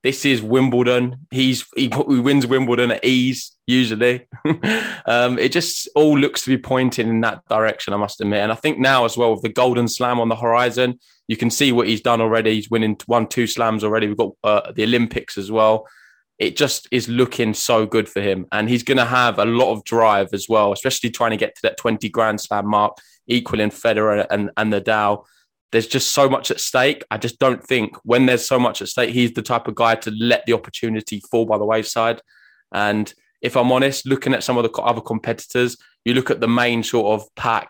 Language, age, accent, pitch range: English, 20-39, British, 110-125 Hz